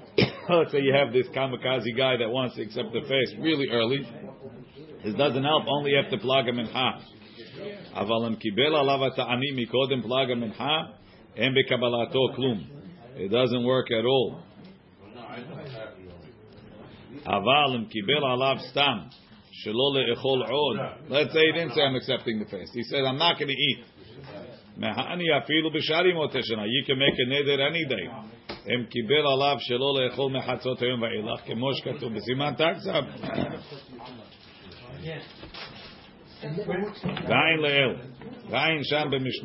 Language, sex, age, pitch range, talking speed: English, male, 50-69, 120-145 Hz, 120 wpm